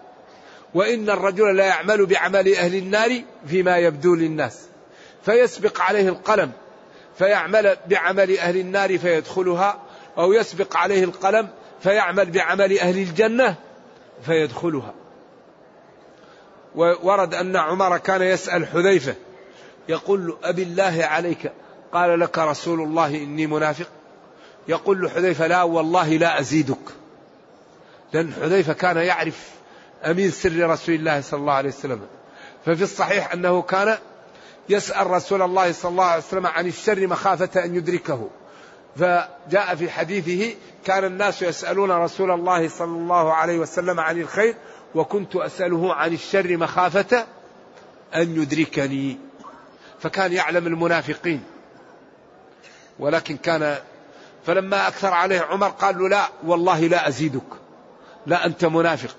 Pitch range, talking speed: 165-195 Hz, 120 wpm